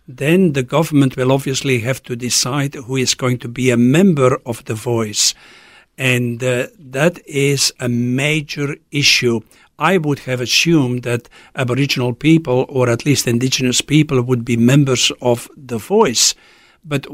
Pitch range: 125-145 Hz